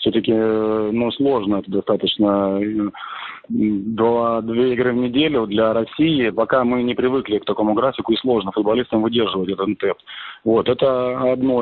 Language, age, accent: Russian, 30-49, native